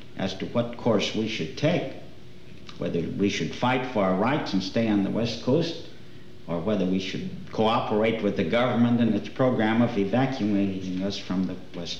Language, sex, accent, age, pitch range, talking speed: English, male, American, 60-79, 100-125 Hz, 185 wpm